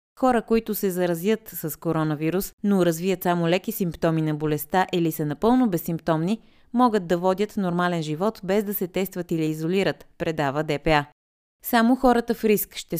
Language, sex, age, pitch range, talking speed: Bulgarian, female, 30-49, 170-215 Hz, 160 wpm